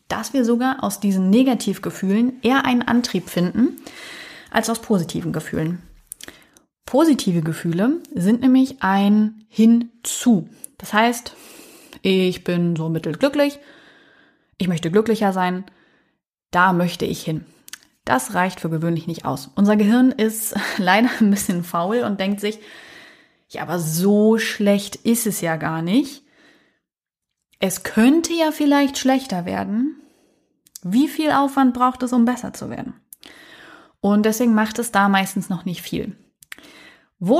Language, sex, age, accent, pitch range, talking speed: German, female, 30-49, German, 185-260 Hz, 135 wpm